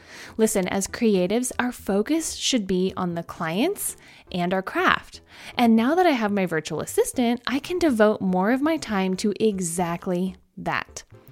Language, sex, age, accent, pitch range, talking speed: English, female, 20-39, American, 180-275 Hz, 165 wpm